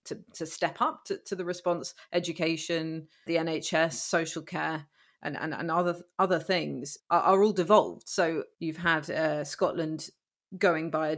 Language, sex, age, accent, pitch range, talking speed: English, female, 30-49, British, 160-195 Hz, 165 wpm